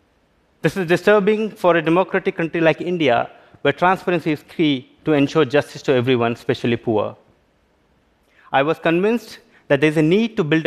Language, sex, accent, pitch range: Korean, male, Indian, 120-165 Hz